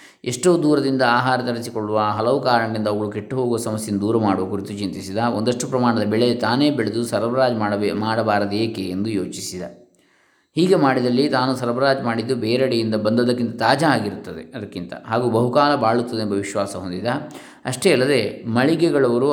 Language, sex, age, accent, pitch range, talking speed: Kannada, male, 20-39, native, 105-130 Hz, 135 wpm